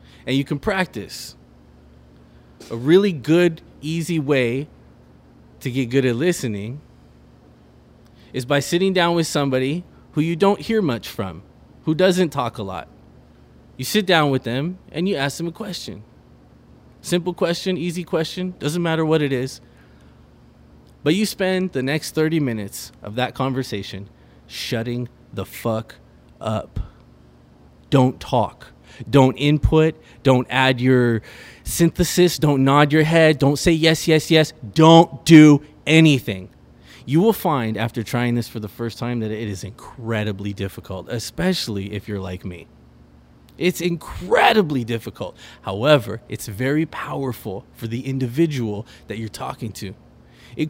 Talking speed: 140 wpm